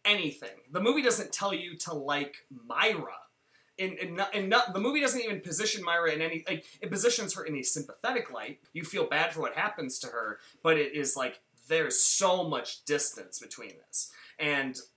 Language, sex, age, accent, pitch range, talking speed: English, male, 30-49, American, 130-175 Hz, 195 wpm